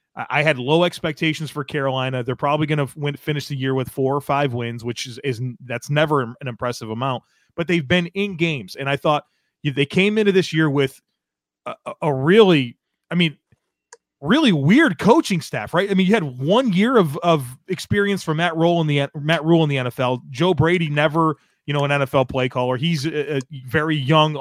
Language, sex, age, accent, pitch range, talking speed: English, male, 30-49, American, 140-180 Hz, 205 wpm